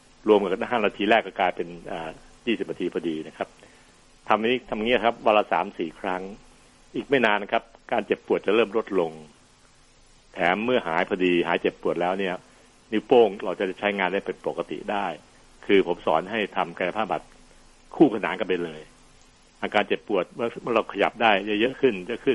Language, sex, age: Thai, male, 60-79